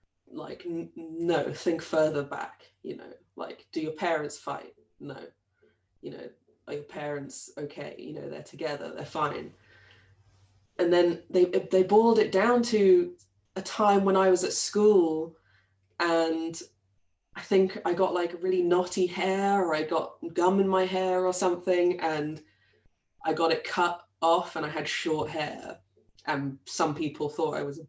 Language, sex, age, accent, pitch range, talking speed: English, female, 20-39, British, 145-180 Hz, 165 wpm